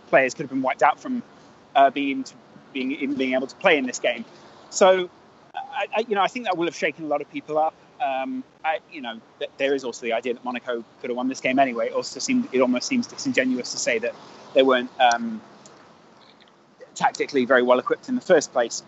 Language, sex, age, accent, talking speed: English, male, 20-39, British, 235 wpm